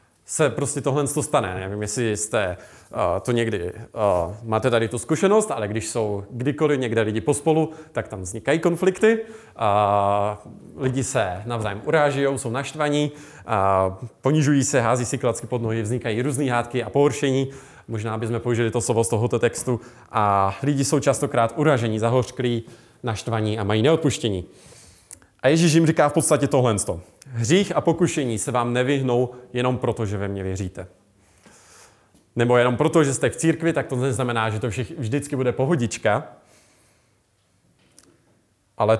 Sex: male